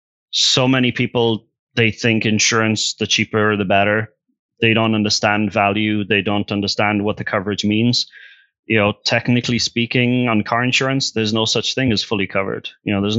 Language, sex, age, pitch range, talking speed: English, male, 30-49, 105-125 Hz, 175 wpm